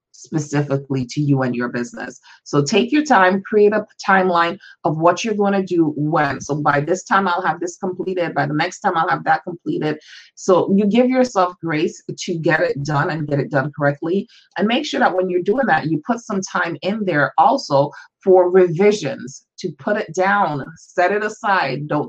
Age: 30-49